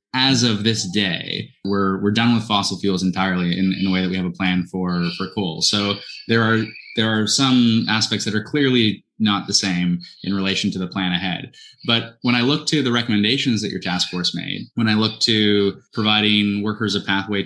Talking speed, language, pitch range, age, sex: 210 wpm, English, 95-105 Hz, 20-39, male